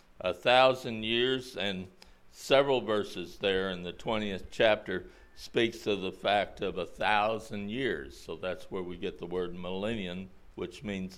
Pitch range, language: 90-115 Hz, English